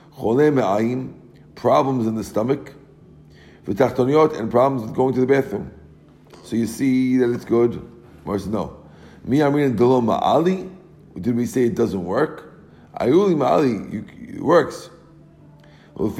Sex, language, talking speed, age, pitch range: male, English, 110 wpm, 50-69, 115-150 Hz